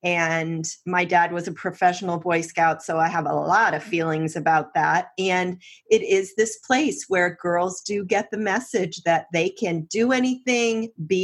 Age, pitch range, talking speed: 40-59, 170-220 Hz, 180 wpm